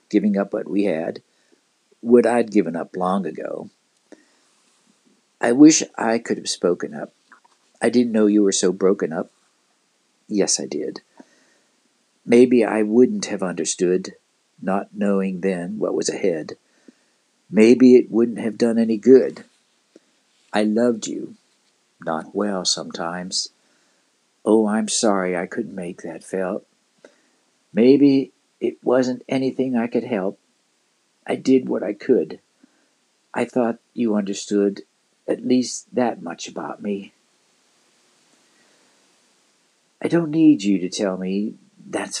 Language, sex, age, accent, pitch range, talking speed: English, male, 60-79, American, 105-130 Hz, 130 wpm